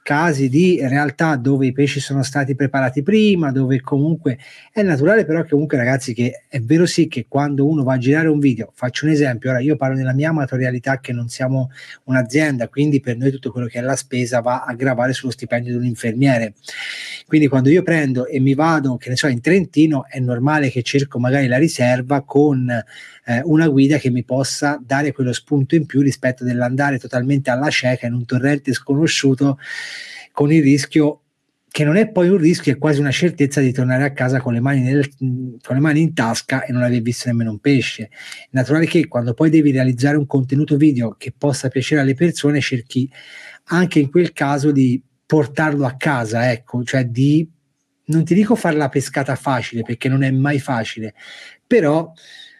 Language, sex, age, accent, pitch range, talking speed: Italian, male, 30-49, native, 130-150 Hz, 195 wpm